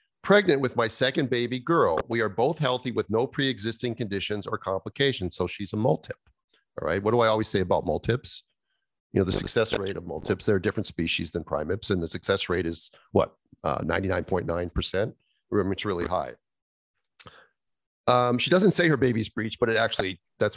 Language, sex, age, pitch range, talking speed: English, male, 40-59, 100-125 Hz, 195 wpm